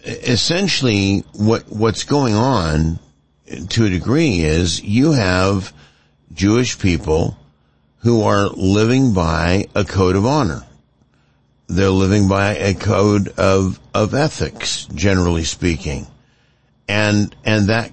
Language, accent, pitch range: English, American, 90-110 Hz